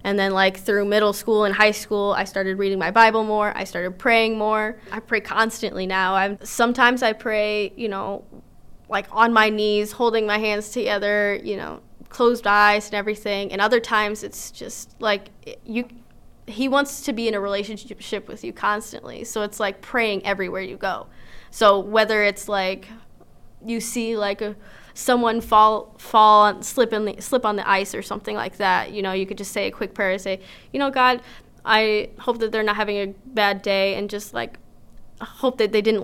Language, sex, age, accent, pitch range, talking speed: English, female, 20-39, American, 205-230 Hz, 200 wpm